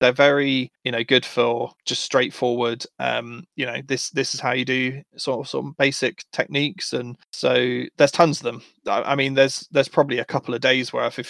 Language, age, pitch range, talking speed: English, 20-39, 125-150 Hz, 220 wpm